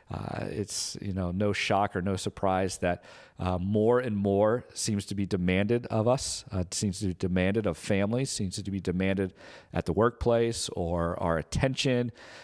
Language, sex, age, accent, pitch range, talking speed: English, male, 50-69, American, 95-115 Hz, 185 wpm